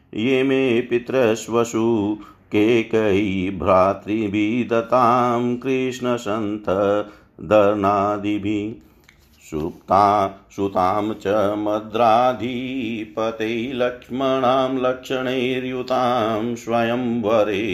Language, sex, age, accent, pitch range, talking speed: Hindi, male, 50-69, native, 105-135 Hz, 35 wpm